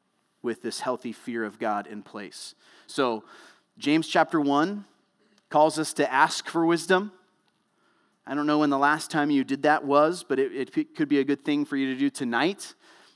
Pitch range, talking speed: 145-180 Hz, 190 wpm